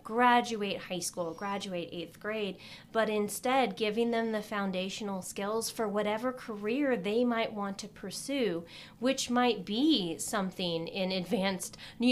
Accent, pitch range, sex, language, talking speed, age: American, 185-230 Hz, female, English, 140 wpm, 30-49